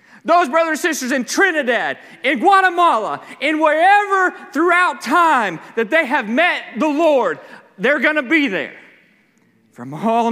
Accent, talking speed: American, 140 wpm